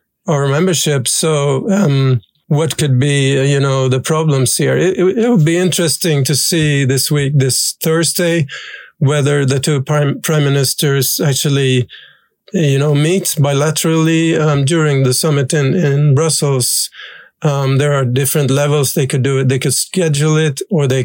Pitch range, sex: 135-160 Hz, male